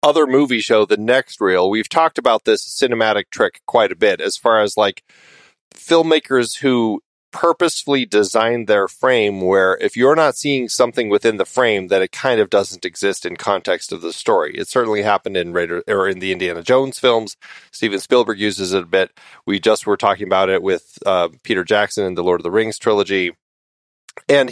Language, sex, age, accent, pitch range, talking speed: English, male, 30-49, American, 100-170 Hz, 195 wpm